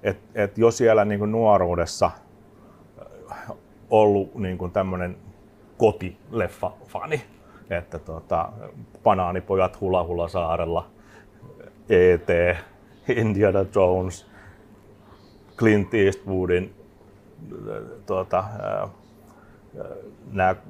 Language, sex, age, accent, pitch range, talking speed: Finnish, male, 30-49, native, 90-105 Hz, 65 wpm